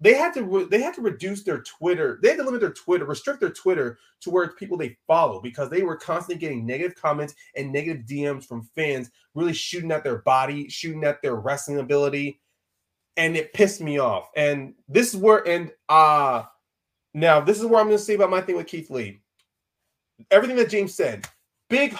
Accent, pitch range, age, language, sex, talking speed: American, 150-215 Hz, 30-49, English, male, 210 wpm